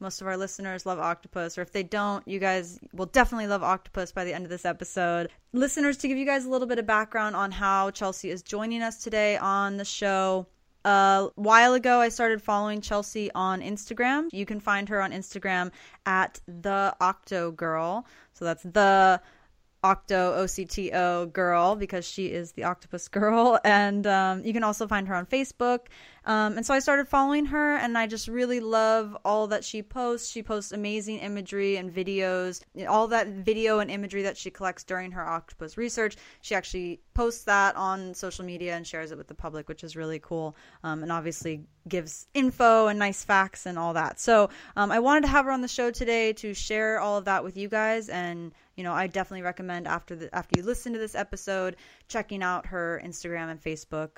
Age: 20-39